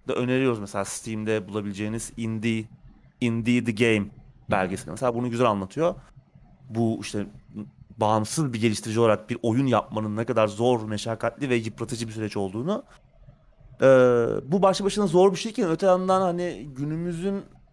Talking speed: 150 wpm